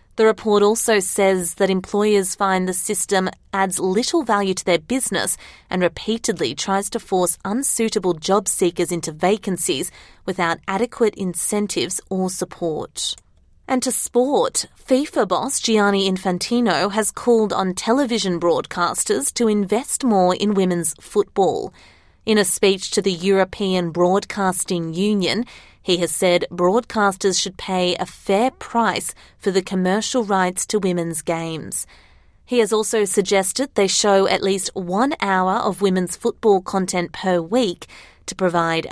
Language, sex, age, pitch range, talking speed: English, female, 30-49, 175-210 Hz, 140 wpm